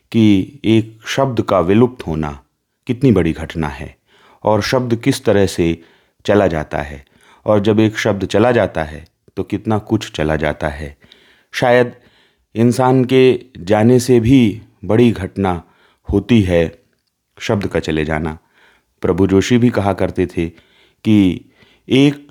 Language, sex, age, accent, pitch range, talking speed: Hindi, male, 30-49, native, 85-120 Hz, 145 wpm